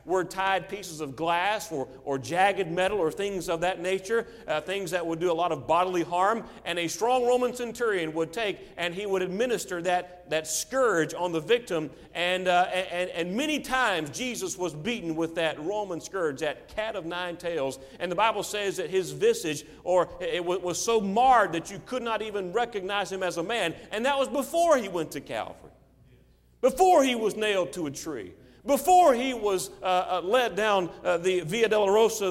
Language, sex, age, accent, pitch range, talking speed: English, male, 40-59, American, 165-220 Hz, 200 wpm